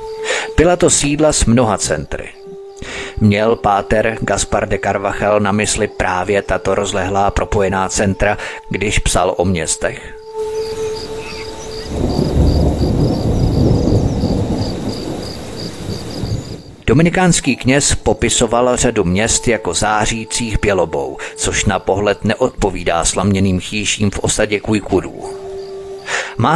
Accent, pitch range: native, 100-160 Hz